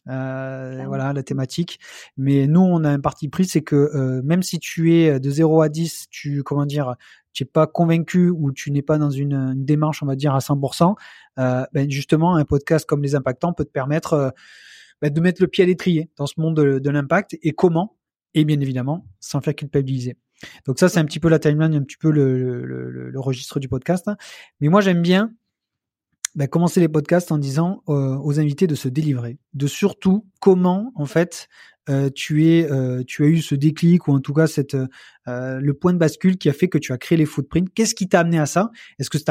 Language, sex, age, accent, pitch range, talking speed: French, male, 30-49, French, 140-170 Hz, 225 wpm